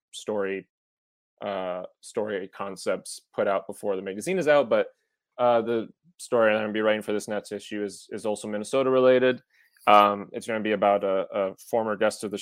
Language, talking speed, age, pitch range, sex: English, 195 wpm, 20-39, 100-120 Hz, male